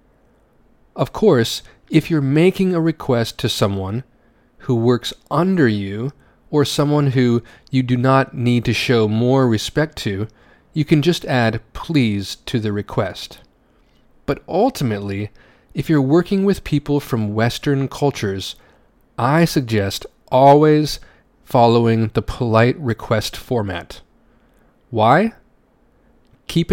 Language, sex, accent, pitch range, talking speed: English, male, American, 115-145 Hz, 120 wpm